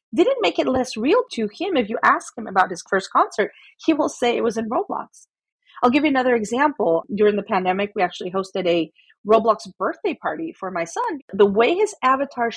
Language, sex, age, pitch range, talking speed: English, female, 40-59, 205-275 Hz, 210 wpm